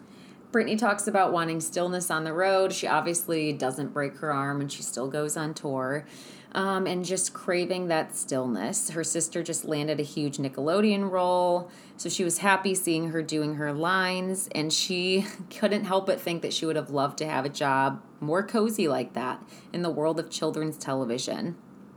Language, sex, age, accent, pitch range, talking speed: English, female, 20-39, American, 150-185 Hz, 185 wpm